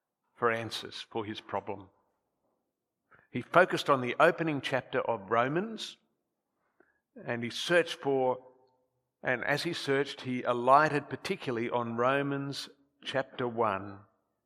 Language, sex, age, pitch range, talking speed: English, male, 50-69, 110-140 Hz, 115 wpm